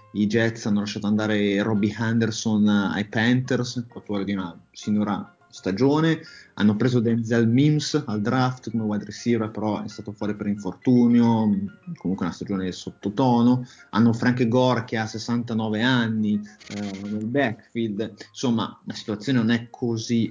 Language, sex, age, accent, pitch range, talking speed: Italian, male, 30-49, native, 105-125 Hz, 150 wpm